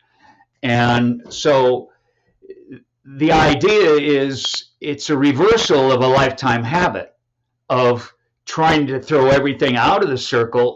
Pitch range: 120-145 Hz